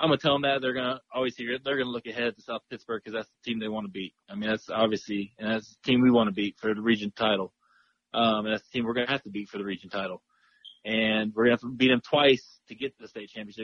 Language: English